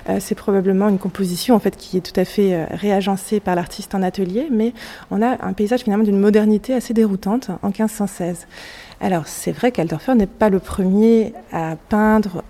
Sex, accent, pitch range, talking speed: female, French, 180-220 Hz, 180 wpm